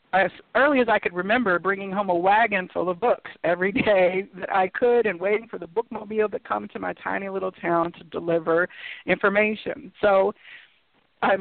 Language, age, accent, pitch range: English, 50-69, American, 185-240 Hz